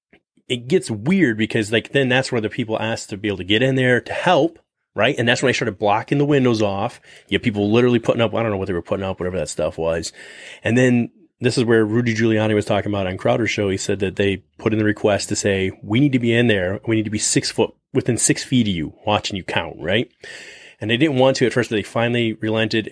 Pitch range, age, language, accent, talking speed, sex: 105-140 Hz, 30-49, English, American, 265 wpm, male